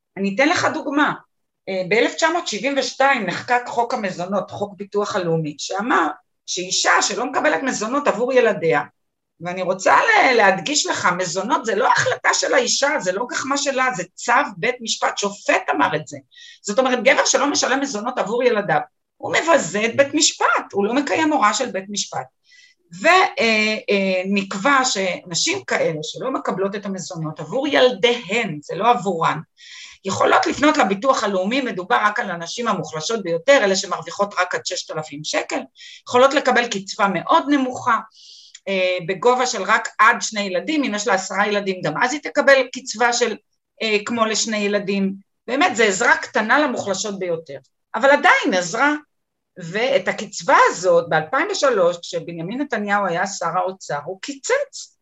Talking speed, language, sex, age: 150 wpm, Hebrew, female, 30-49